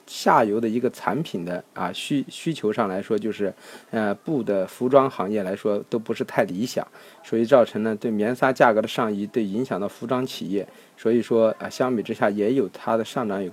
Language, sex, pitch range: Chinese, male, 115-145 Hz